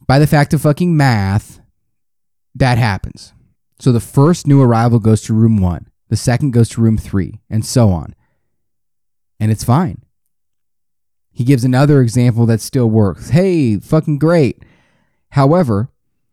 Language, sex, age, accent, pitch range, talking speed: English, male, 30-49, American, 100-135 Hz, 145 wpm